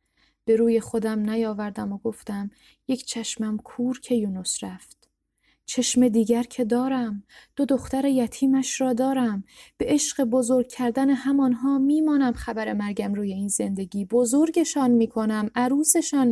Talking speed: 130 wpm